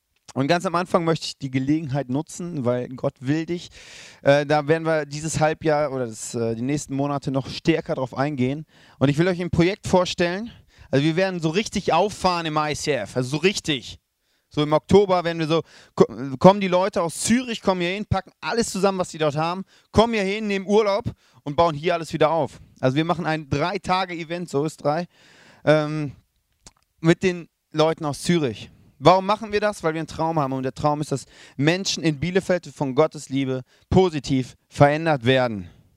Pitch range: 135-180 Hz